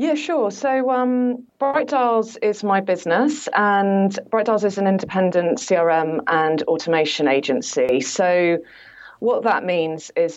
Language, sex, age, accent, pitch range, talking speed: English, female, 30-49, British, 150-185 Hz, 140 wpm